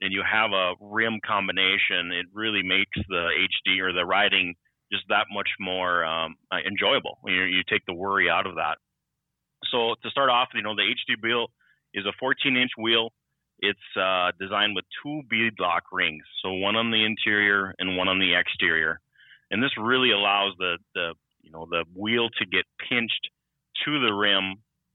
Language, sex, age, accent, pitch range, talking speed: English, male, 30-49, American, 90-110 Hz, 180 wpm